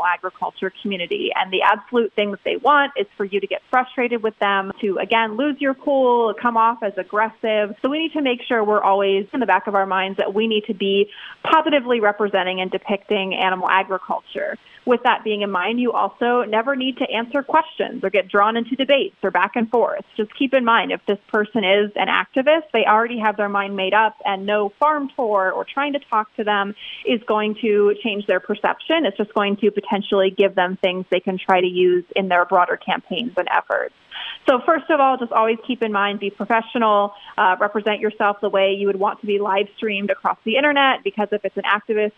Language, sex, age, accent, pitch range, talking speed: English, female, 30-49, American, 200-255 Hz, 220 wpm